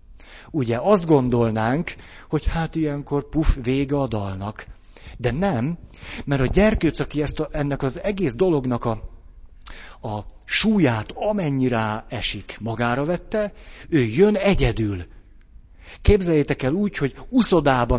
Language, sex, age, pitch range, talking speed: Hungarian, male, 60-79, 100-155 Hz, 125 wpm